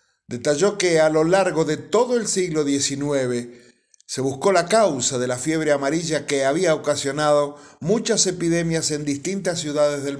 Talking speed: 160 wpm